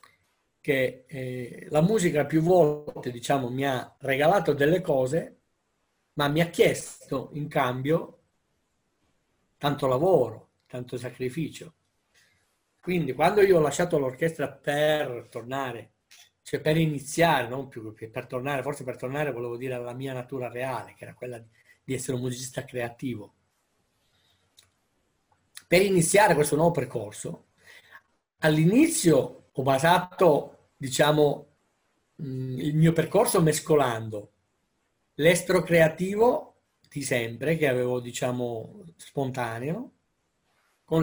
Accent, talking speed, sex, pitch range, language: native, 115 wpm, male, 125-160 Hz, Italian